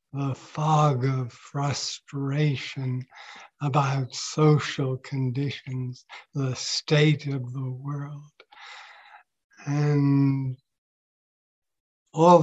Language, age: English, 60-79